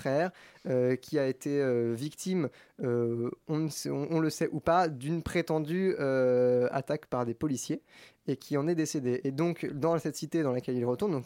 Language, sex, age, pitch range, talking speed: French, male, 20-39, 130-160 Hz, 190 wpm